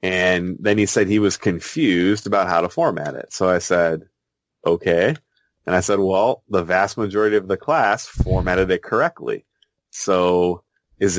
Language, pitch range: English, 90-125 Hz